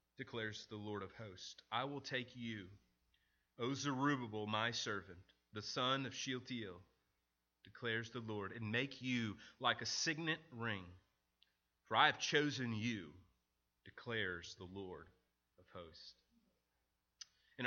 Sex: male